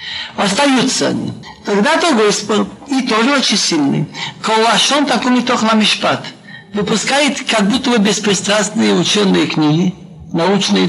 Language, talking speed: Russian, 105 wpm